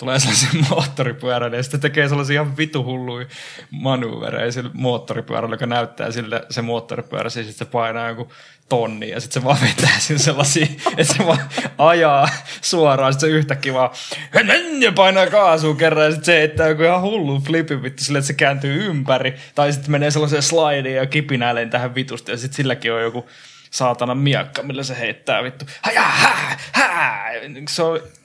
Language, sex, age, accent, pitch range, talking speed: Finnish, male, 20-39, native, 120-145 Hz, 155 wpm